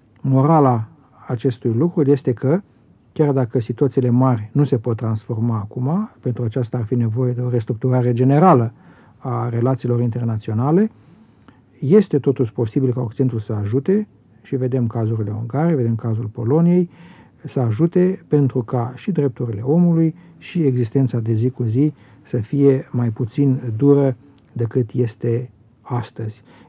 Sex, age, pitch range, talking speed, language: male, 50-69, 120-145 Hz, 135 wpm, Romanian